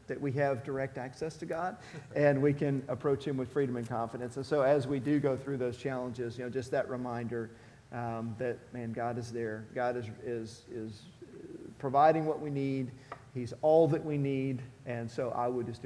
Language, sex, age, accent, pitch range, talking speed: English, male, 40-59, American, 120-140 Hz, 205 wpm